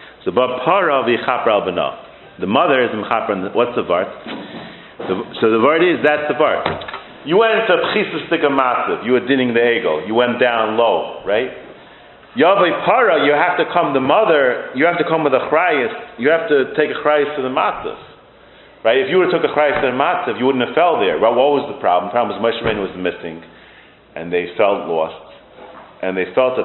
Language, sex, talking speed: English, male, 200 wpm